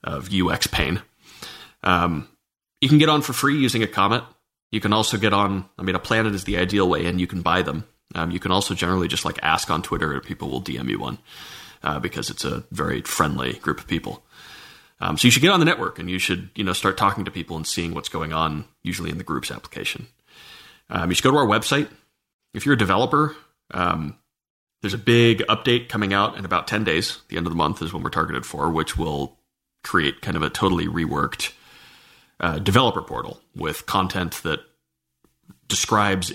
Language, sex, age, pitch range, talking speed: English, male, 30-49, 85-100 Hz, 215 wpm